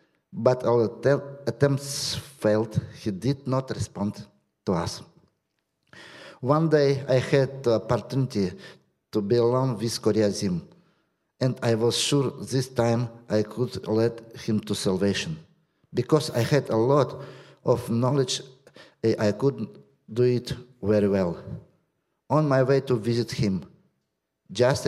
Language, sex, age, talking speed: English, male, 50-69, 130 wpm